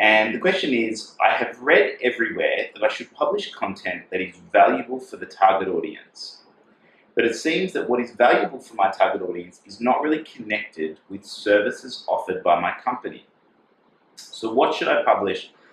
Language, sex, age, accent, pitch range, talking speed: English, male, 30-49, Australian, 95-150 Hz, 175 wpm